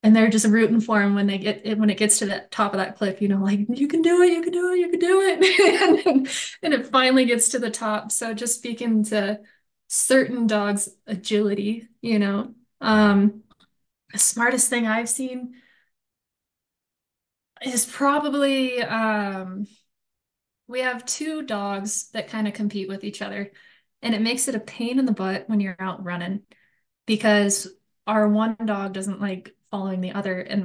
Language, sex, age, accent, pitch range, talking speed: English, female, 20-39, American, 205-250 Hz, 185 wpm